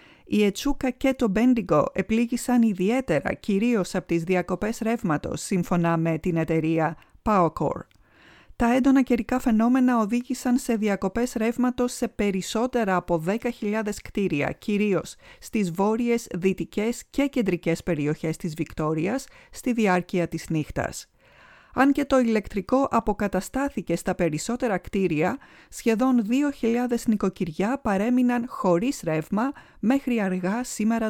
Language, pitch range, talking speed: Greek, 185-250 Hz, 115 wpm